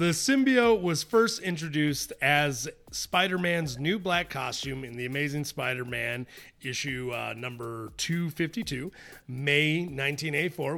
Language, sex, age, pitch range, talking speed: English, male, 30-49, 130-185 Hz, 110 wpm